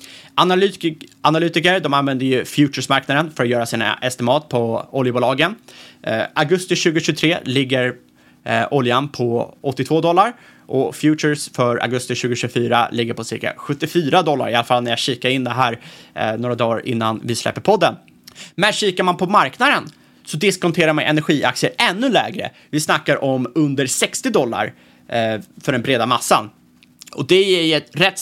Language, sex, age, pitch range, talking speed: Swedish, male, 30-49, 125-165 Hz, 155 wpm